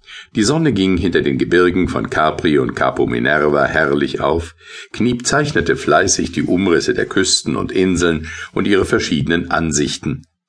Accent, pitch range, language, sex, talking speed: German, 80-115 Hz, German, male, 150 wpm